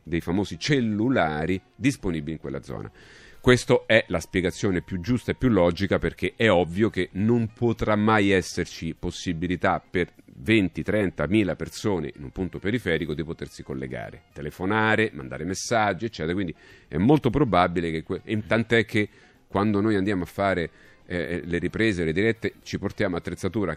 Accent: native